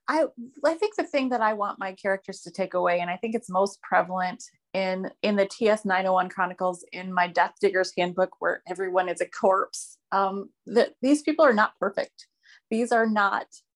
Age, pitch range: 30-49, 180-220 Hz